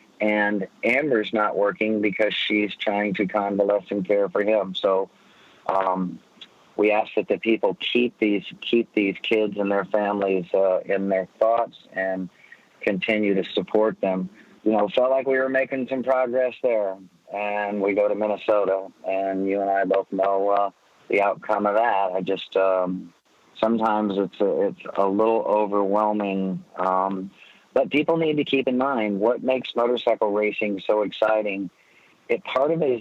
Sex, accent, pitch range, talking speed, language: male, American, 100-110 Hz, 165 wpm, English